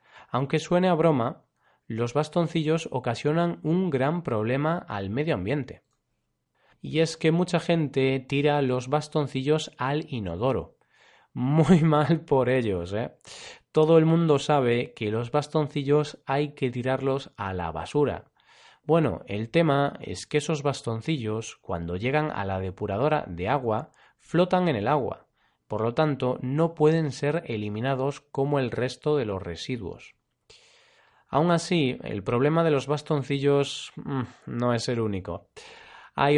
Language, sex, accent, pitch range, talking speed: Spanish, male, Spanish, 115-155 Hz, 140 wpm